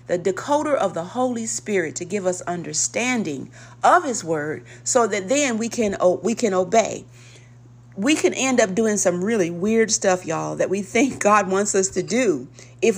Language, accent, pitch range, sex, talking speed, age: English, American, 155-210 Hz, female, 185 wpm, 40-59